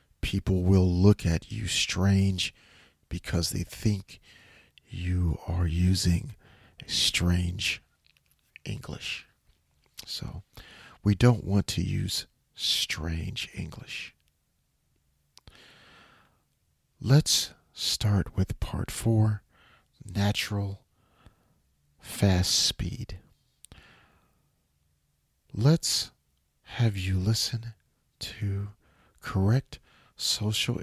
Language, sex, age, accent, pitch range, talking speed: English, male, 40-59, American, 85-110 Hz, 70 wpm